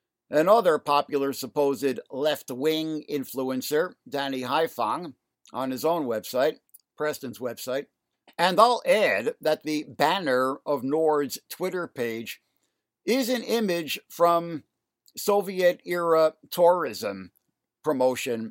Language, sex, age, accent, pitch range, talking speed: English, male, 60-79, American, 140-195 Hz, 105 wpm